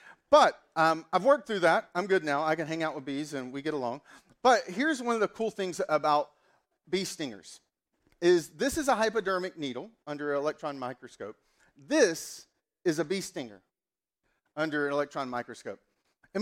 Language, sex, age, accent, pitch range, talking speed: English, male, 40-59, American, 165-235 Hz, 180 wpm